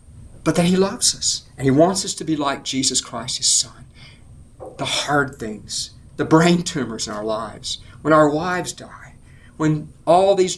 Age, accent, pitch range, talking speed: 50-69, American, 115-145 Hz, 180 wpm